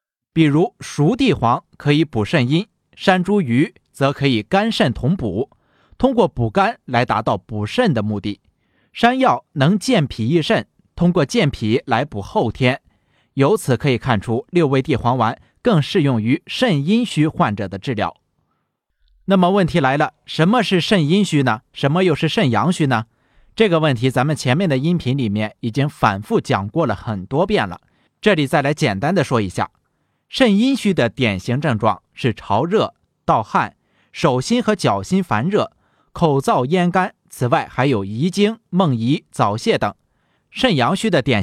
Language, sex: Chinese, male